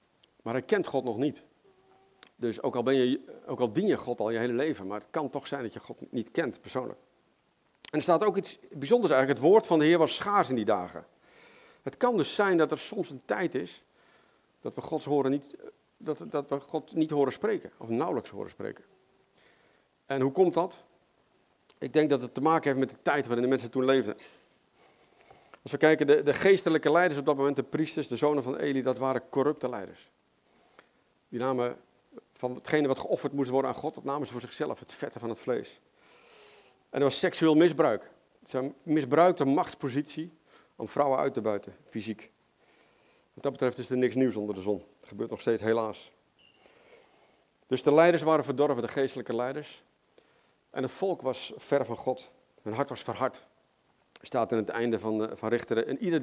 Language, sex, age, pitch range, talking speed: Dutch, male, 50-69, 125-155 Hz, 205 wpm